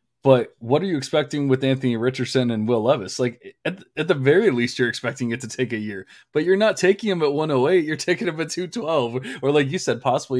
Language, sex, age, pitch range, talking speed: English, male, 20-39, 120-150 Hz, 240 wpm